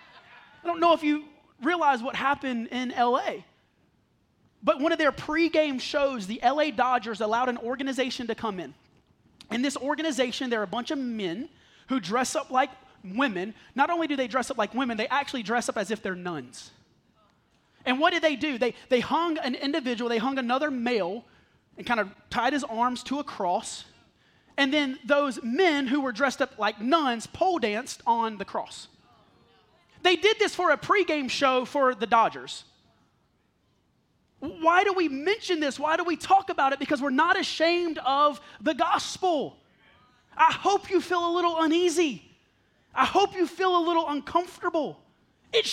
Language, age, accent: English, 30-49, American